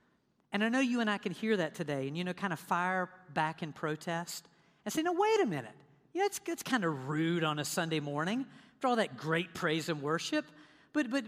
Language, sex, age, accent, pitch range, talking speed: English, female, 50-69, American, 175-260 Hz, 240 wpm